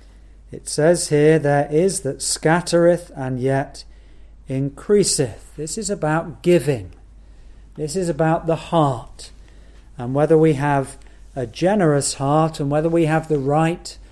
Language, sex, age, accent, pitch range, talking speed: English, male, 40-59, British, 135-165 Hz, 135 wpm